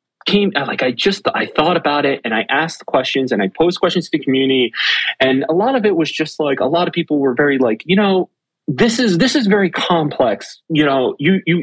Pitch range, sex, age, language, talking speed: 130-195 Hz, male, 30-49, English, 240 wpm